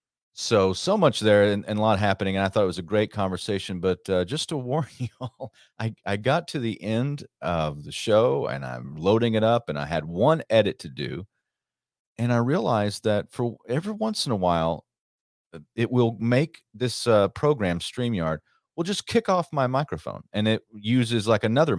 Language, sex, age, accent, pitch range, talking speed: English, male, 40-59, American, 90-120 Hz, 200 wpm